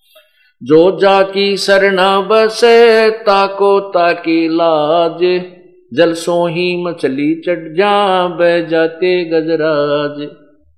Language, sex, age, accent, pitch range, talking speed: Hindi, male, 50-69, native, 135-195 Hz, 80 wpm